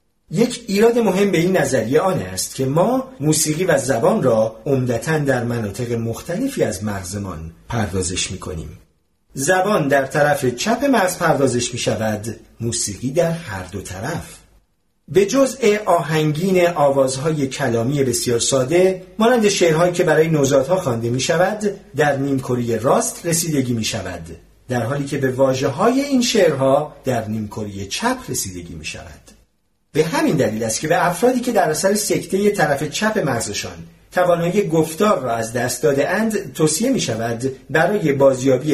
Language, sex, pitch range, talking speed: Persian, male, 120-180 Hz, 150 wpm